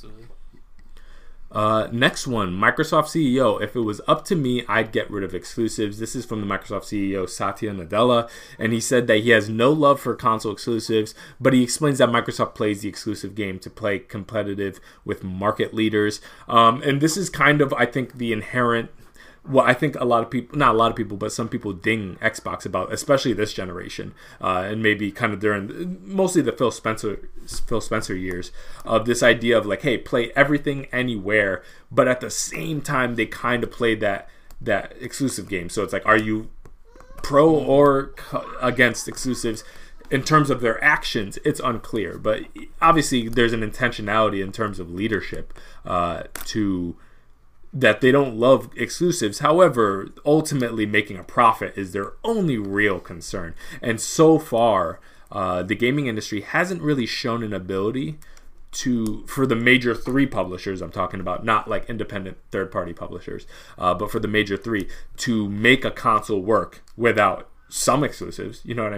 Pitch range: 105-130 Hz